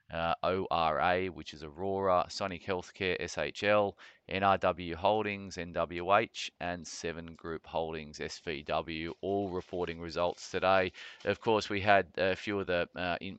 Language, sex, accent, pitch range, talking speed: English, male, Australian, 80-95 Hz, 135 wpm